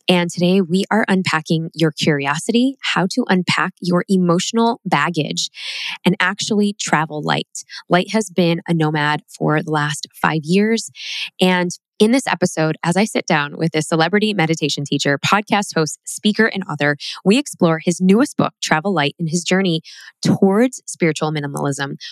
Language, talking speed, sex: English, 155 wpm, female